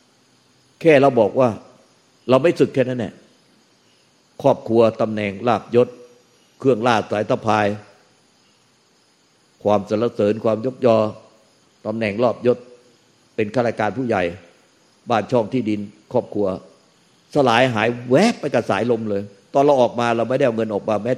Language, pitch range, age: Thai, 105-130 Hz, 50-69